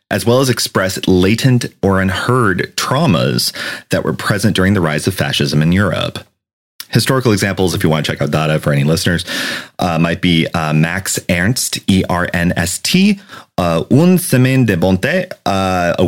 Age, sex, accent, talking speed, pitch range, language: 30-49, male, American, 160 wpm, 75-100 Hz, English